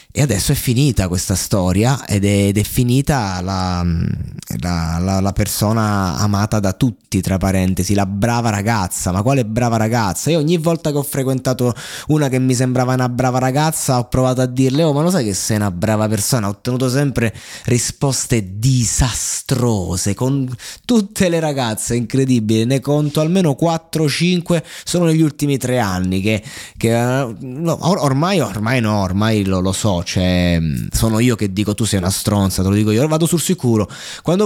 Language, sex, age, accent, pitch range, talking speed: Italian, male, 20-39, native, 100-135 Hz, 175 wpm